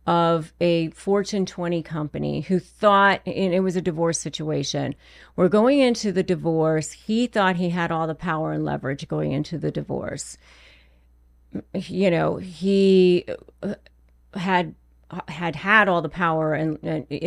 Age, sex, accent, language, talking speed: 40-59, female, American, English, 140 wpm